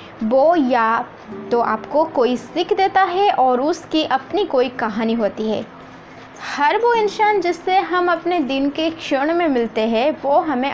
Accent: native